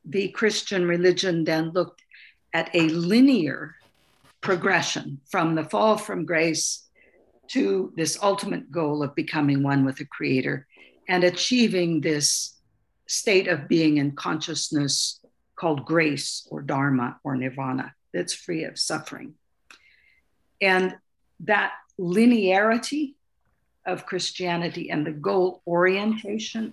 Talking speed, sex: 115 wpm, female